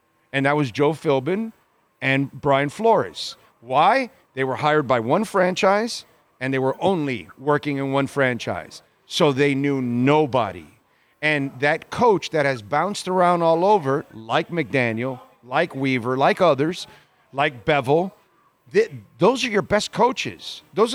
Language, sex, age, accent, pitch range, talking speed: English, male, 40-59, American, 140-190 Hz, 145 wpm